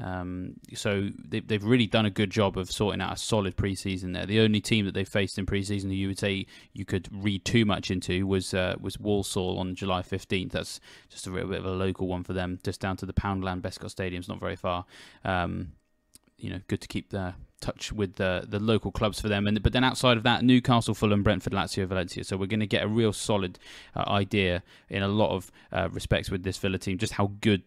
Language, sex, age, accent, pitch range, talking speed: English, male, 20-39, British, 95-115 Hz, 240 wpm